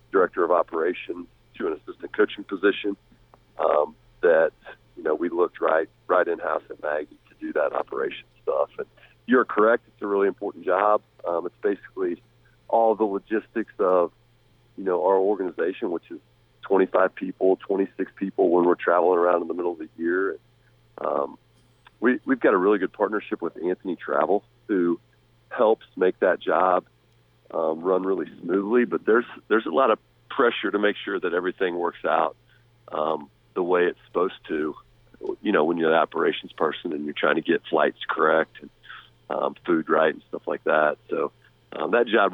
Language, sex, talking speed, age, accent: English, male, 175 wpm, 40-59, American